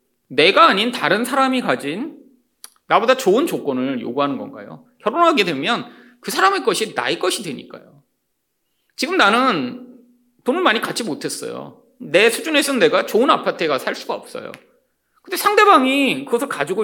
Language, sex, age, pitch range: Korean, male, 30-49, 250-380 Hz